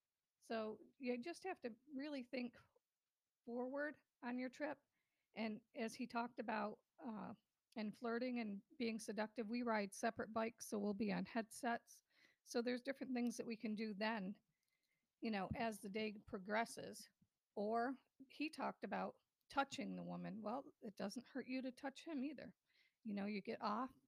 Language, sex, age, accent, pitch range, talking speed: English, female, 50-69, American, 210-250 Hz, 165 wpm